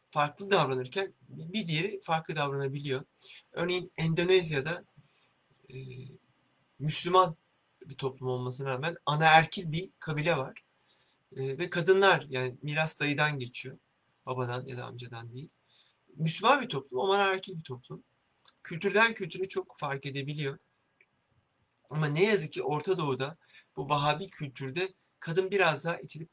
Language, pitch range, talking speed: Turkish, 135-175 Hz, 125 wpm